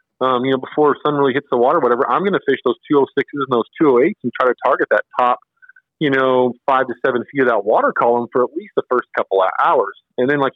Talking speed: 260 wpm